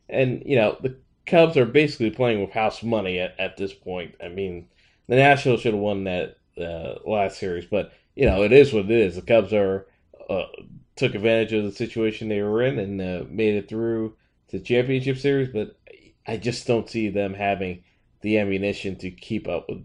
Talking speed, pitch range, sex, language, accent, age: 205 wpm, 95-115 Hz, male, English, American, 20-39